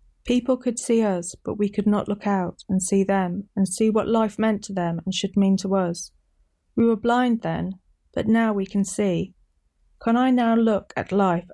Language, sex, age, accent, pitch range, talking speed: English, female, 30-49, British, 175-215 Hz, 210 wpm